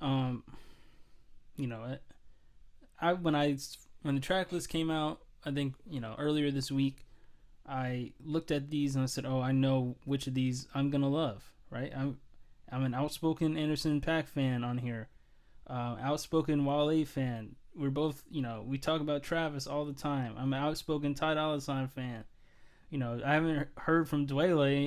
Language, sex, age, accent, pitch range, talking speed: English, male, 20-39, American, 125-155 Hz, 180 wpm